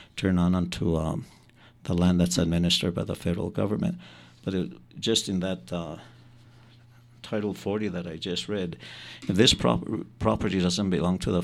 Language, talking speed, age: English, 170 wpm, 60-79